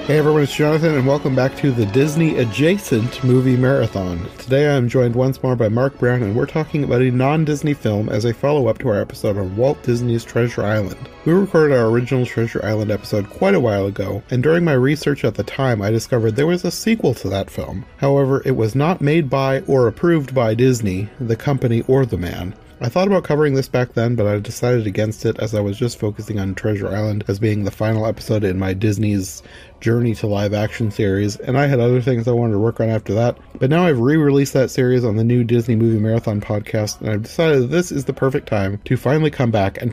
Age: 30-49